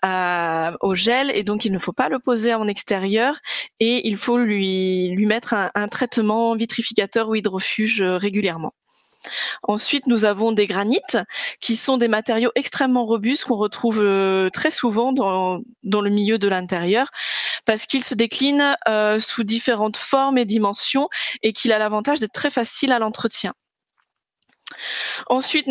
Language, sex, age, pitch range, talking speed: French, female, 20-39, 210-255 Hz, 155 wpm